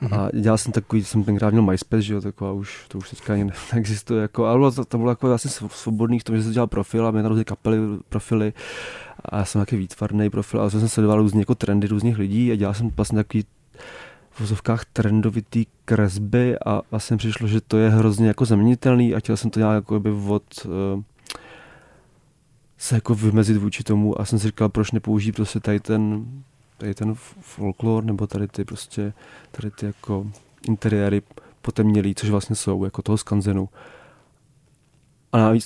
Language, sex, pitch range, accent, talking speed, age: Czech, male, 100-115 Hz, native, 185 wpm, 20-39